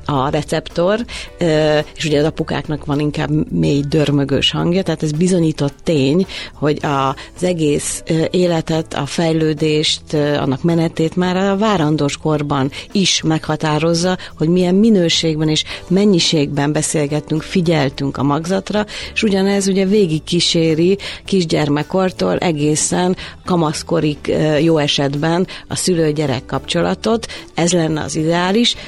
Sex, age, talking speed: female, 40-59, 110 wpm